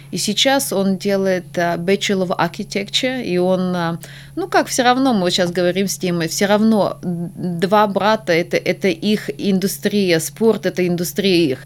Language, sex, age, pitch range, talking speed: Russian, female, 20-39, 170-200 Hz, 160 wpm